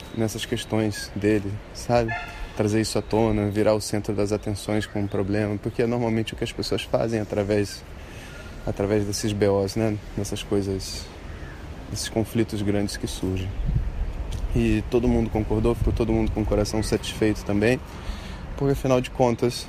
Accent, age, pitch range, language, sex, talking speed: Brazilian, 20-39, 95-110 Hz, Portuguese, male, 160 wpm